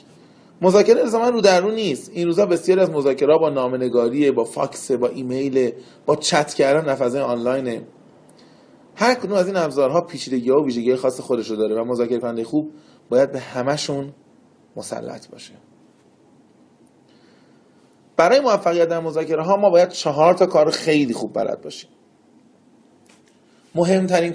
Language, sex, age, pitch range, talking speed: Persian, male, 30-49, 130-185 Hz, 135 wpm